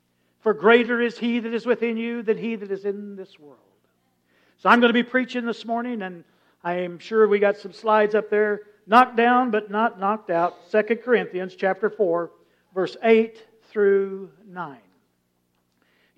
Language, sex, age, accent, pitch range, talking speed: English, male, 60-79, American, 170-225 Hz, 175 wpm